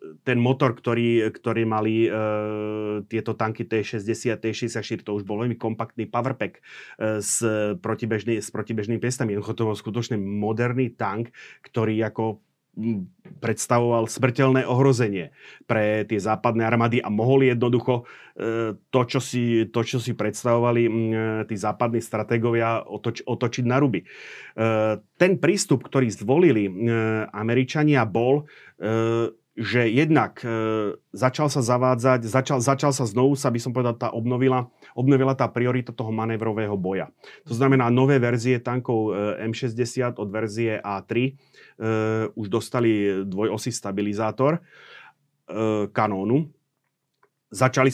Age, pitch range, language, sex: 30-49, 110-130 Hz, Slovak, male